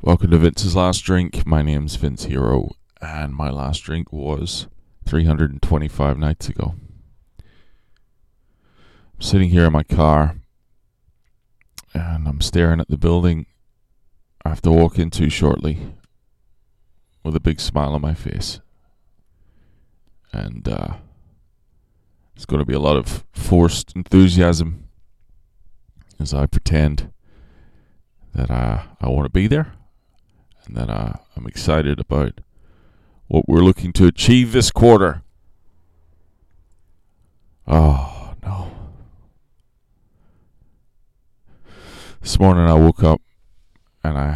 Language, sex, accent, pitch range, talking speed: English, male, American, 75-90 Hz, 115 wpm